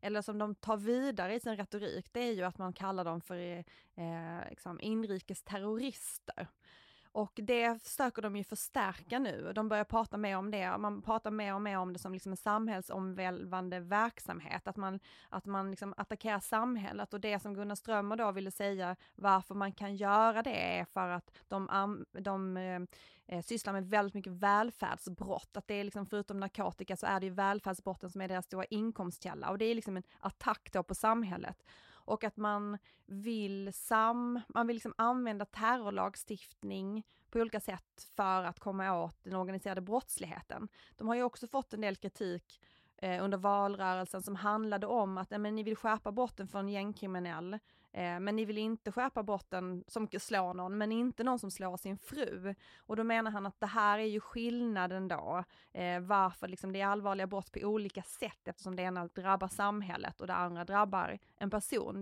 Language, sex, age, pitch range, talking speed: English, female, 20-39, 190-215 Hz, 185 wpm